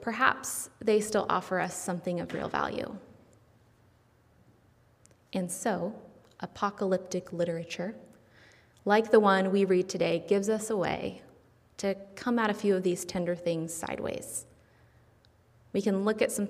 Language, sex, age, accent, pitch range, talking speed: English, female, 20-39, American, 175-215 Hz, 140 wpm